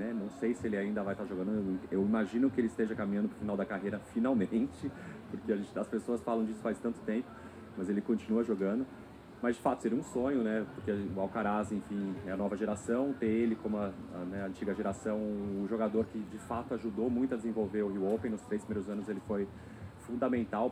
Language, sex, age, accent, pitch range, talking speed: Portuguese, male, 30-49, Brazilian, 105-120 Hz, 225 wpm